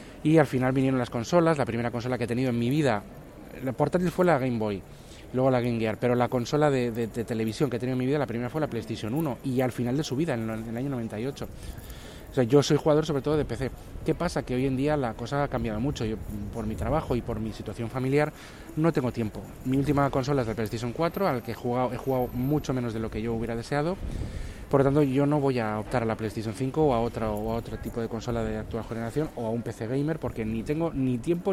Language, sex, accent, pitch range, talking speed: Spanish, male, Spanish, 115-150 Hz, 270 wpm